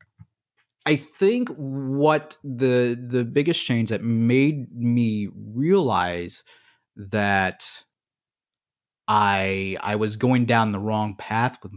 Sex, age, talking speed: male, 30-49, 105 wpm